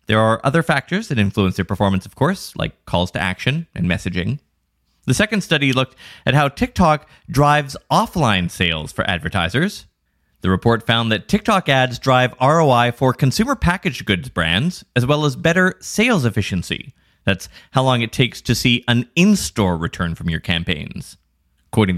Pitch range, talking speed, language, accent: 95-155 Hz, 165 wpm, English, American